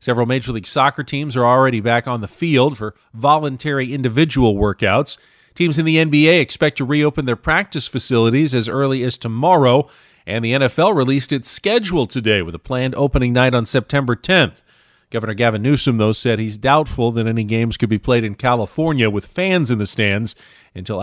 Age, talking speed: 40-59, 185 wpm